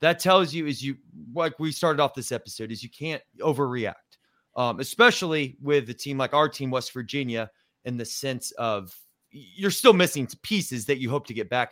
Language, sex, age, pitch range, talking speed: English, male, 30-49, 125-155 Hz, 200 wpm